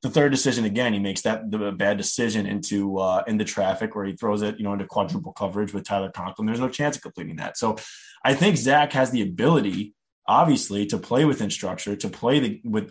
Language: English